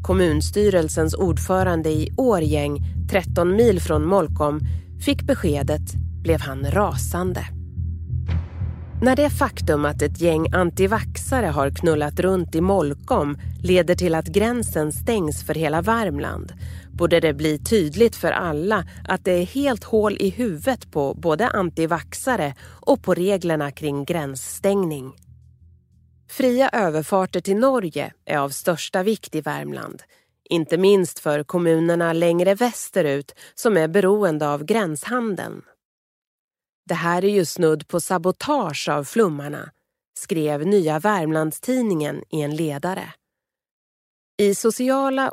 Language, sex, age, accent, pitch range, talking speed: Swedish, female, 30-49, native, 145-200 Hz, 120 wpm